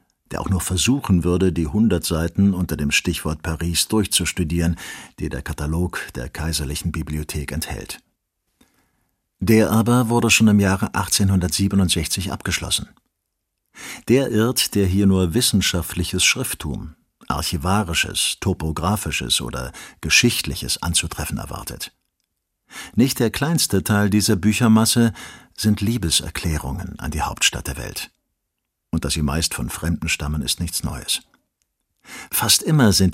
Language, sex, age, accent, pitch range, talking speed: German, male, 50-69, German, 85-105 Hz, 120 wpm